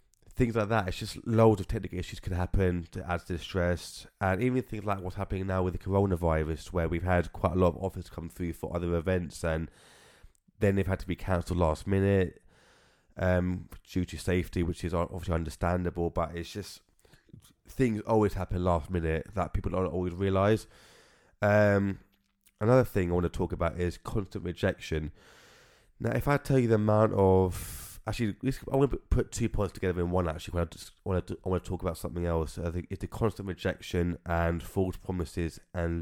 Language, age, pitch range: English, 20-39, 85-100 Hz